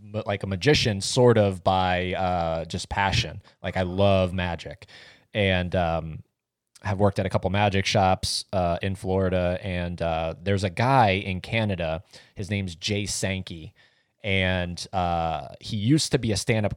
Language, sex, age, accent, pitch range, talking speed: English, male, 20-39, American, 95-110 Hz, 160 wpm